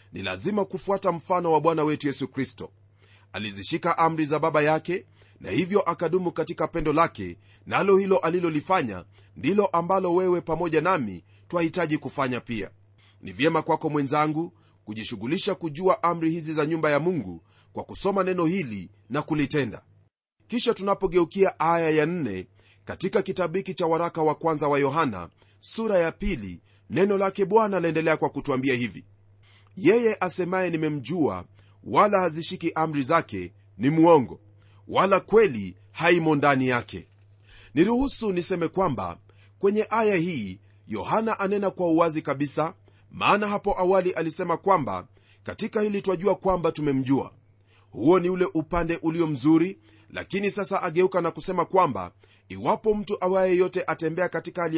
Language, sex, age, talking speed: Swahili, male, 30-49, 140 wpm